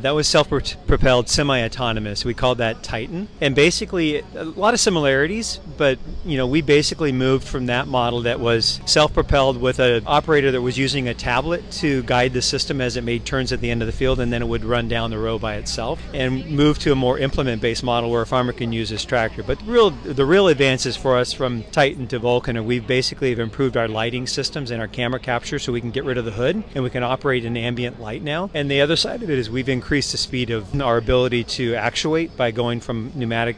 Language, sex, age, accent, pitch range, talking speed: English, male, 40-59, American, 115-140 Hz, 235 wpm